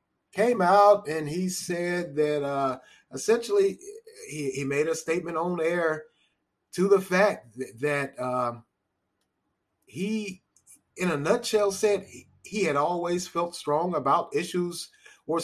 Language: English